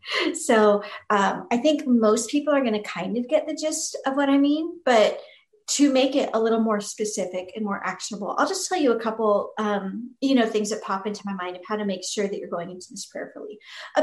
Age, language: 40-59, English